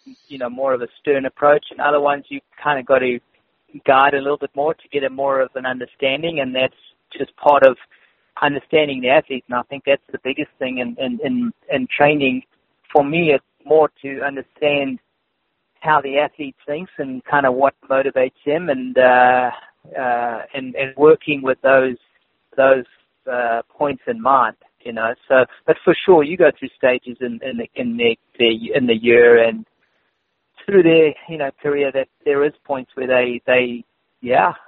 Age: 40-59